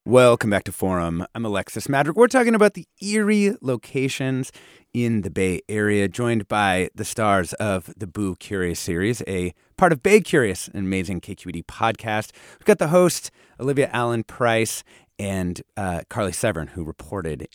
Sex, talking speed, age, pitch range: male, 165 wpm, 30-49, 95-155 Hz